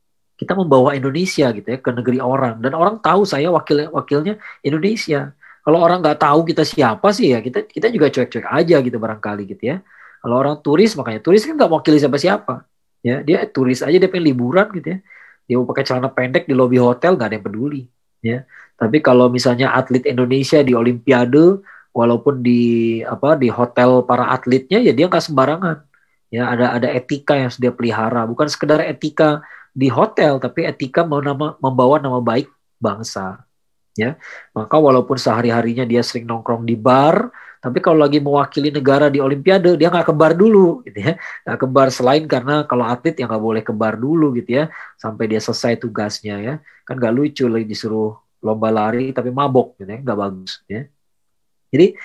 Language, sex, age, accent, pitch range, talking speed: Indonesian, male, 20-39, native, 120-155 Hz, 185 wpm